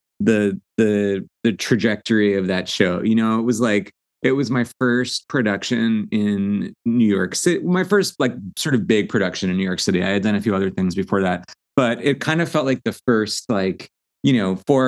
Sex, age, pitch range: male, 30-49, 100-130 Hz